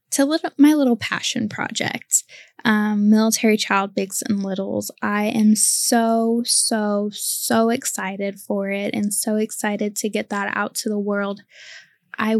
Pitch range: 200-230 Hz